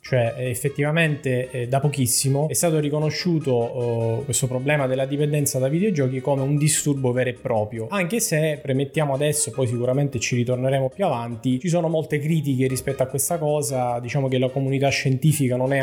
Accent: native